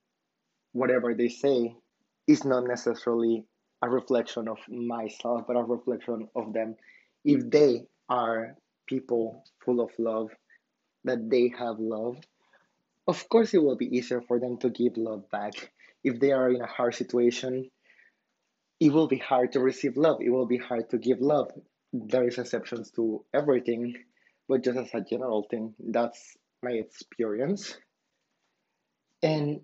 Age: 20-39